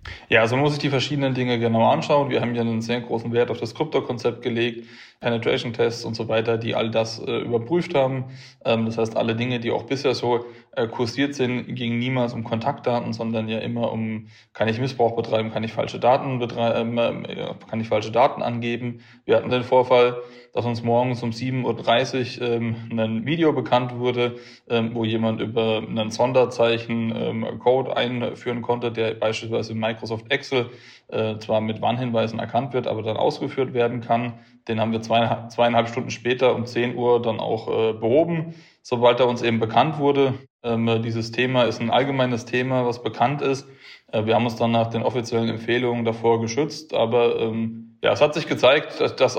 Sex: male